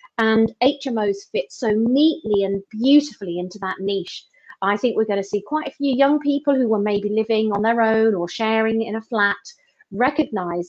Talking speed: 185 wpm